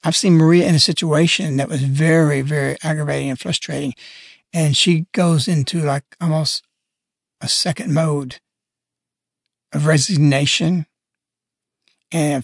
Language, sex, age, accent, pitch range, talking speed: English, male, 60-79, American, 145-175 Hz, 120 wpm